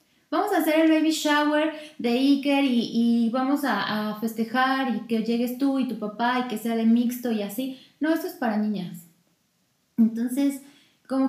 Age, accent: 20-39, Mexican